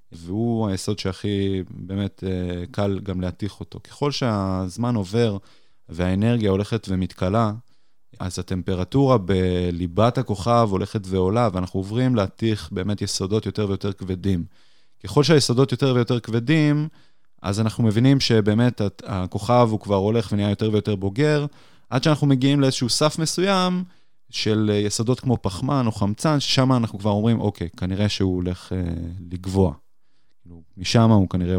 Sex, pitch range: male, 95-120 Hz